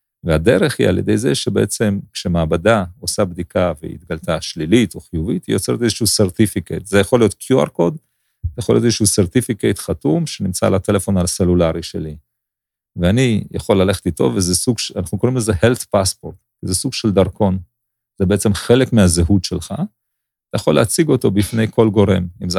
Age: 40-59